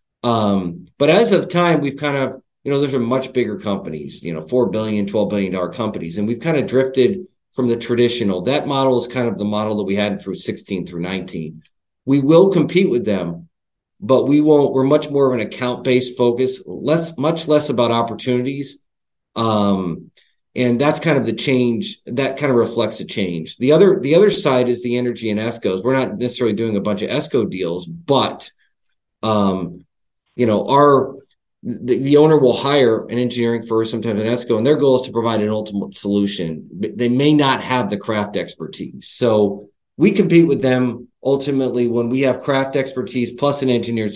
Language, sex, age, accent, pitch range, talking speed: English, male, 40-59, American, 105-140 Hz, 195 wpm